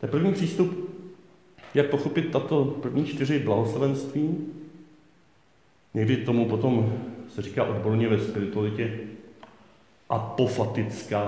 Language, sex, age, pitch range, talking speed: Czech, male, 50-69, 110-150 Hz, 100 wpm